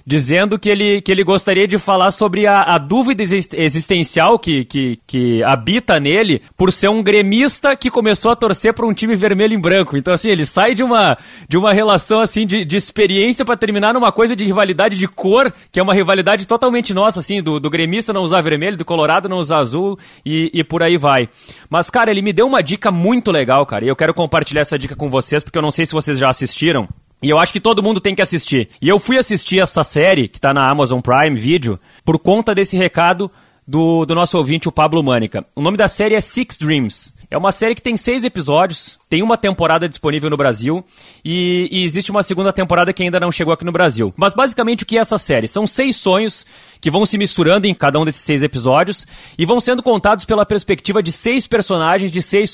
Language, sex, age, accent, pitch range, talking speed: Portuguese, male, 20-39, Brazilian, 155-210 Hz, 220 wpm